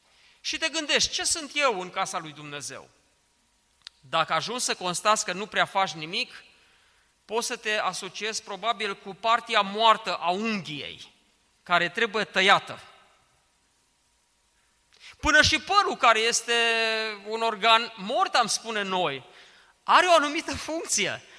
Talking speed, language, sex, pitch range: 130 wpm, Romanian, male, 190-275 Hz